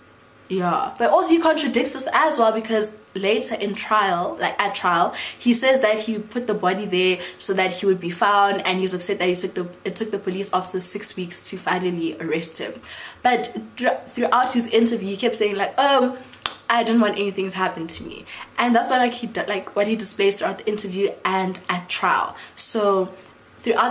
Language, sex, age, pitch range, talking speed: English, female, 20-39, 185-220 Hz, 205 wpm